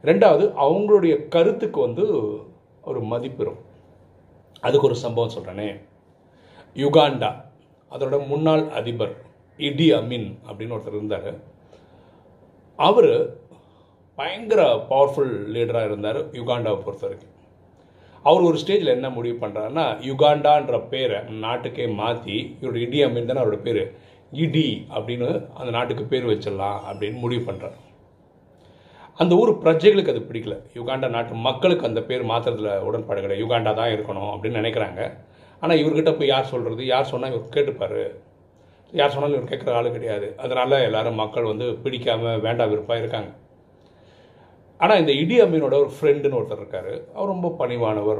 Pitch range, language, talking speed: 110-165 Hz, Tamil, 125 wpm